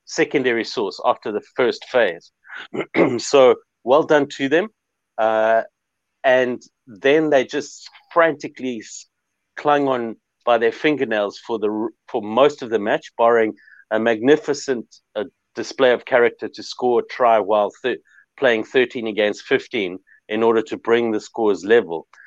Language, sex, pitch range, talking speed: English, male, 110-150 Hz, 145 wpm